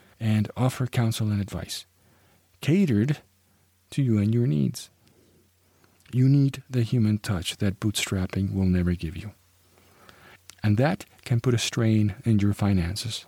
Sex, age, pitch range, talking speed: male, 40-59, 95-115 Hz, 140 wpm